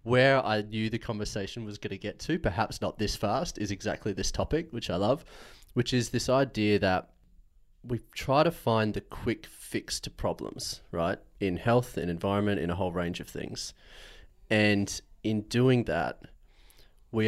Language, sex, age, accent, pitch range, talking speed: English, male, 30-49, Australian, 90-110 Hz, 175 wpm